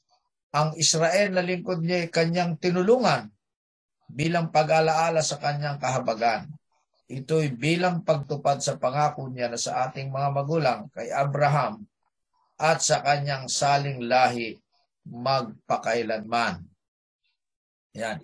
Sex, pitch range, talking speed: male, 130-175 Hz, 110 wpm